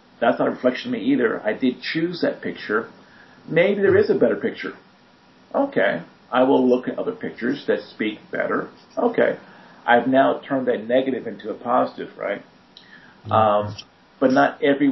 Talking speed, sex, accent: 170 wpm, male, American